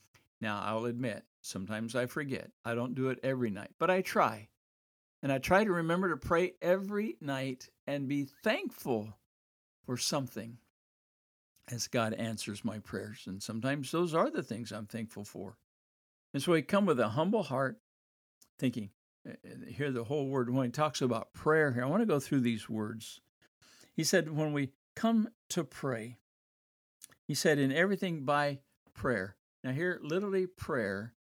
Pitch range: 110-165 Hz